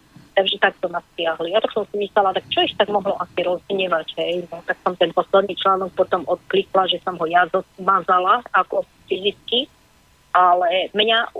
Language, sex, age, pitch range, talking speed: Slovak, female, 30-49, 180-215 Hz, 175 wpm